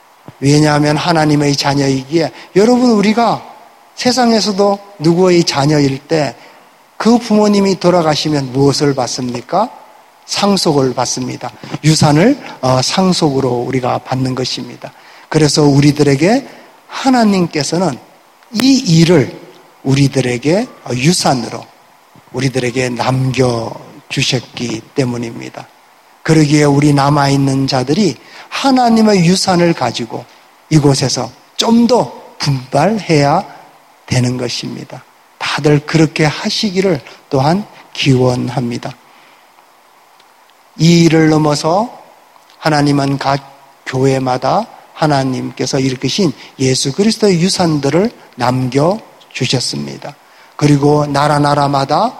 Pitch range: 130-175 Hz